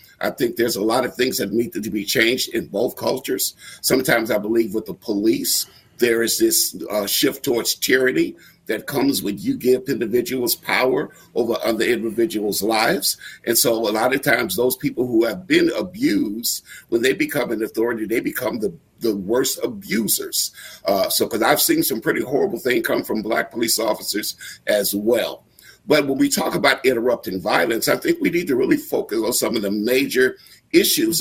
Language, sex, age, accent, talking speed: English, male, 50-69, American, 190 wpm